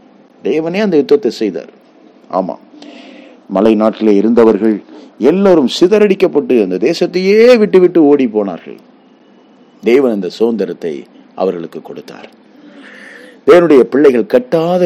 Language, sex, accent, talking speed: Tamil, male, native, 55 wpm